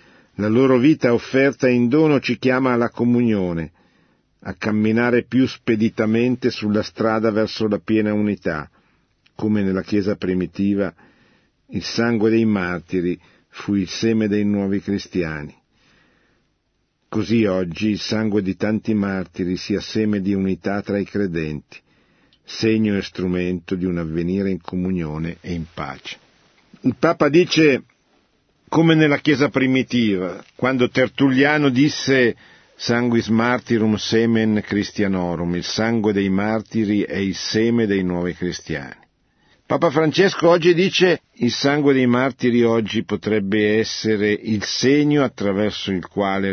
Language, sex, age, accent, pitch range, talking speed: Italian, male, 50-69, native, 95-125 Hz, 130 wpm